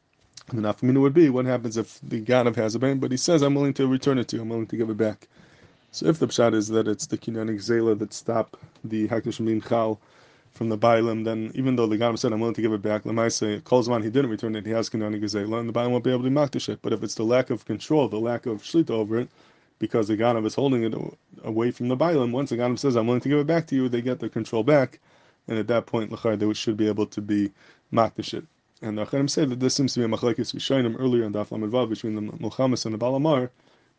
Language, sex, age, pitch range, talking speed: English, male, 20-39, 110-125 Hz, 275 wpm